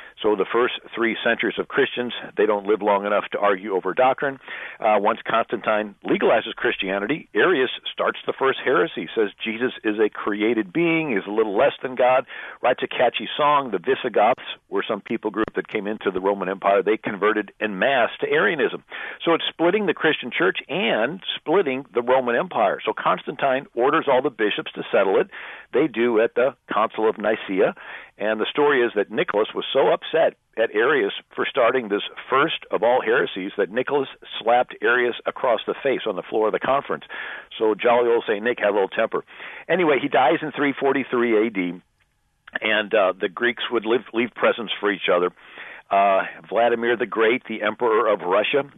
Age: 50-69